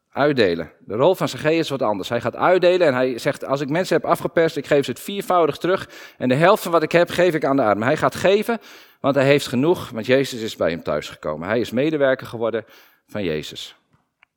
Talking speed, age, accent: 230 wpm, 40-59, Dutch